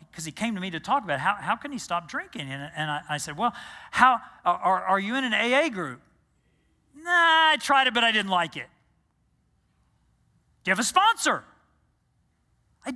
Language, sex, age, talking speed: English, male, 40-59, 200 wpm